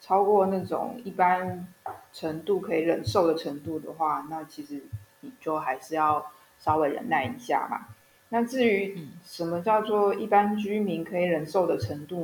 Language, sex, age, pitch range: Chinese, female, 20-39, 155-180 Hz